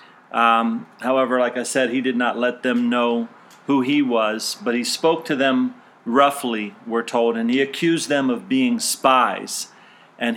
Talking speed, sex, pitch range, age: 175 wpm, male, 125-155 Hz, 40-59